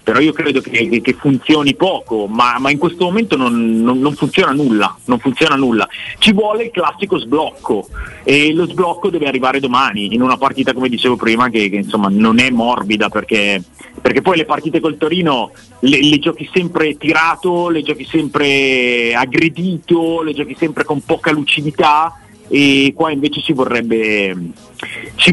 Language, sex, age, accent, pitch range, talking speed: Italian, male, 30-49, native, 120-160 Hz, 170 wpm